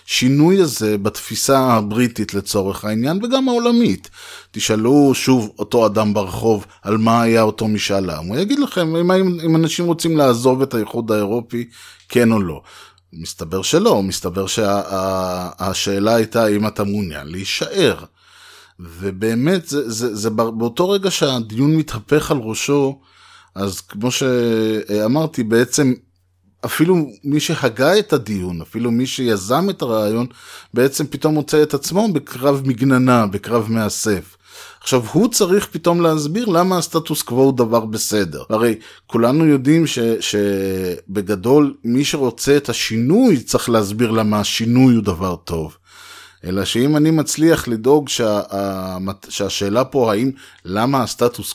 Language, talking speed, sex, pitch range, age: Hebrew, 135 wpm, male, 100-145 Hz, 20-39